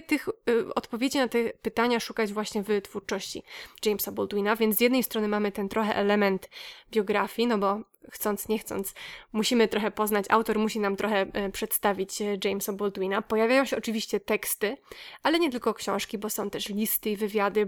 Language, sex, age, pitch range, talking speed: Polish, female, 20-39, 205-235 Hz, 165 wpm